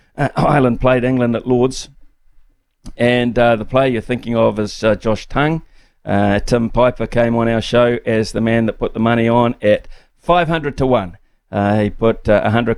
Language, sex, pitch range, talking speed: English, male, 110-125 Hz, 195 wpm